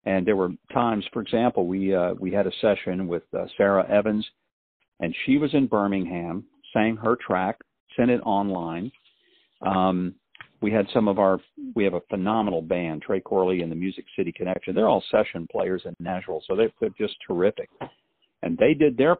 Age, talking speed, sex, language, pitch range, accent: 50-69, 190 wpm, male, English, 95-135 Hz, American